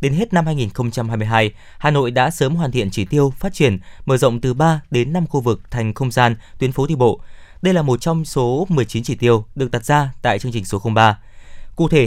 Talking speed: 235 wpm